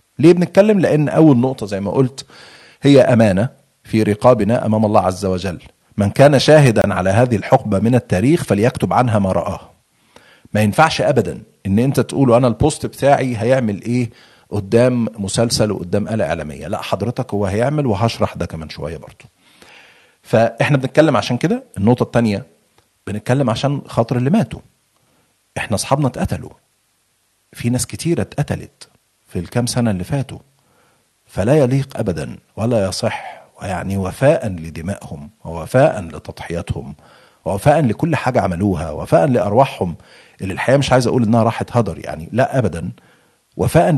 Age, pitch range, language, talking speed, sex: 40-59, 100-130 Hz, Arabic, 140 wpm, male